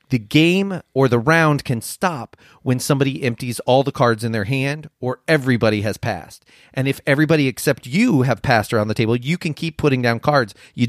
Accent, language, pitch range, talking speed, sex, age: American, English, 115-145 Hz, 205 wpm, male, 30-49